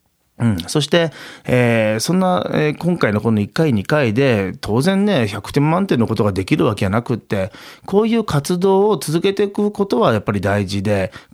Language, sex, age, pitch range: Japanese, male, 40-59, 105-150 Hz